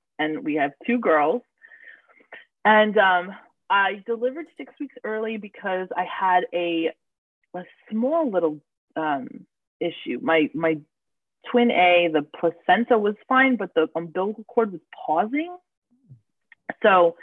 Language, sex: English, female